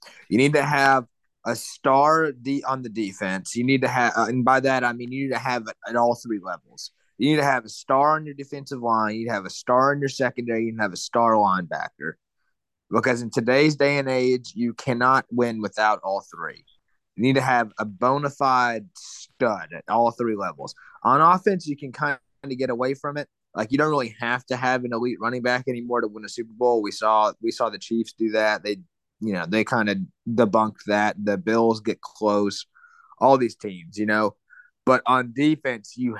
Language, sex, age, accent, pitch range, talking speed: English, male, 20-39, American, 105-130 Hz, 220 wpm